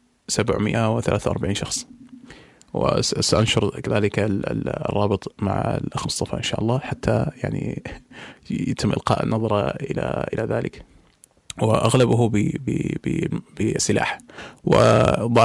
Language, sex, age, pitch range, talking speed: Arabic, male, 20-39, 105-125 Hz, 80 wpm